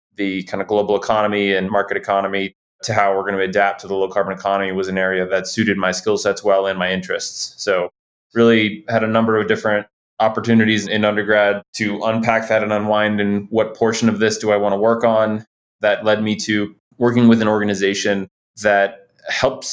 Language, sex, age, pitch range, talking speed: English, male, 20-39, 90-110 Hz, 200 wpm